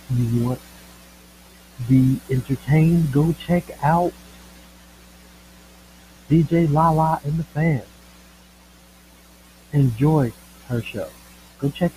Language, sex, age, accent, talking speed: English, male, 60-79, American, 90 wpm